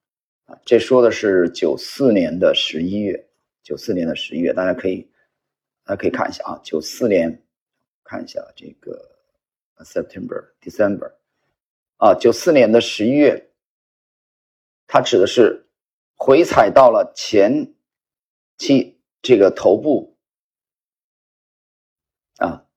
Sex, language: male, Chinese